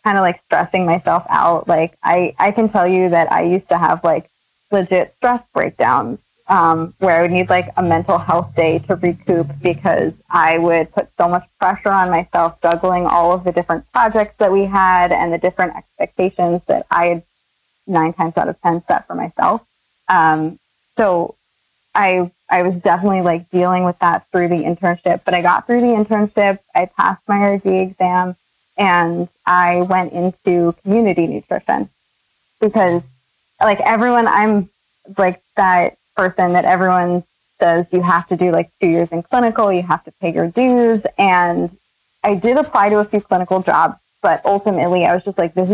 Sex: female